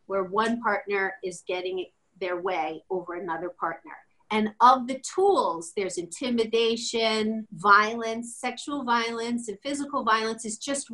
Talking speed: 130 wpm